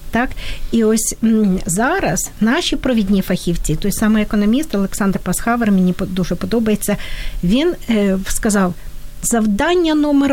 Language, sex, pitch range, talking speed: Ukrainian, female, 195-245 Hz, 105 wpm